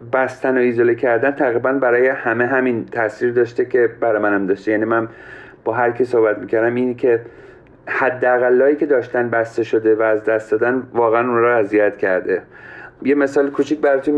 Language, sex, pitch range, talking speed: Persian, male, 110-130 Hz, 180 wpm